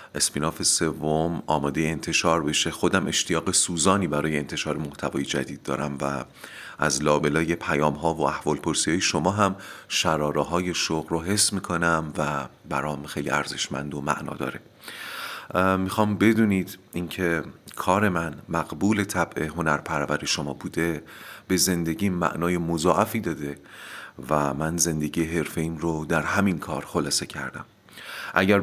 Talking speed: 130 wpm